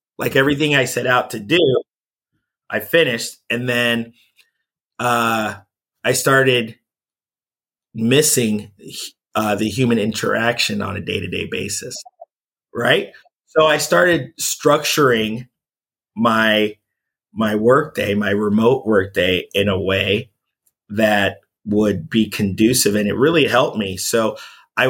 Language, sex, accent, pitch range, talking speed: English, male, American, 110-130 Hz, 115 wpm